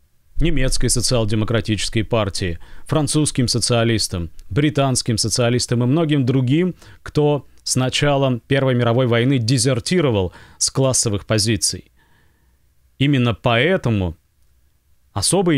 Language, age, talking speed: Russian, 40-59, 90 wpm